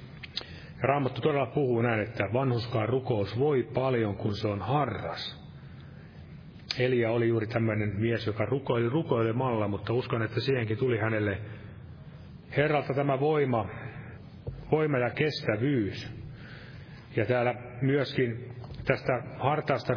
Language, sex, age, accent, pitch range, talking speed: Finnish, male, 30-49, native, 115-135 Hz, 115 wpm